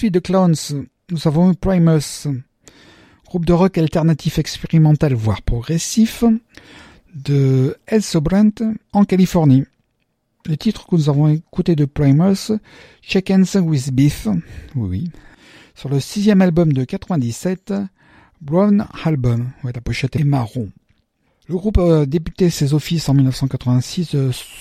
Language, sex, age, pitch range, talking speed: French, male, 60-79, 135-190 Hz, 135 wpm